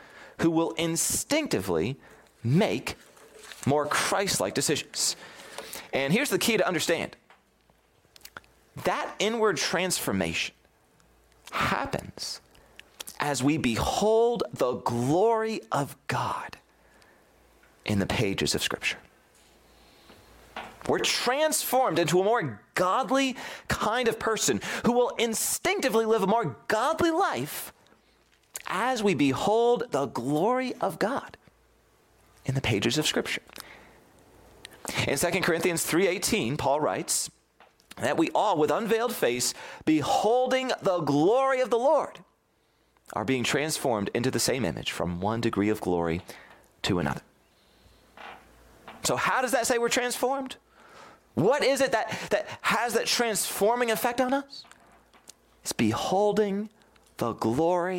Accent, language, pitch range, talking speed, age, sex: American, English, 145-240 Hz, 115 wpm, 30-49, male